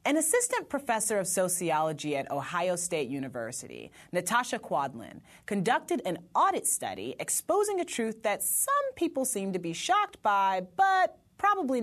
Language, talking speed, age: English, 140 wpm, 30-49